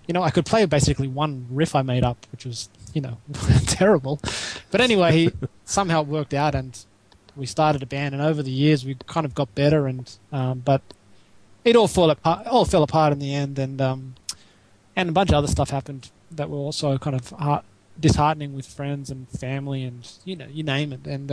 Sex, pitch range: male, 125-160 Hz